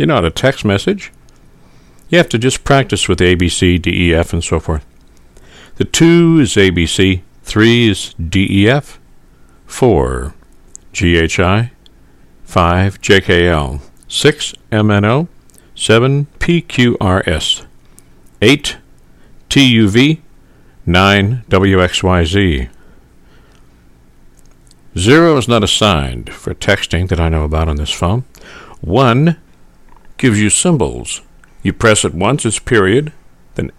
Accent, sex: American, male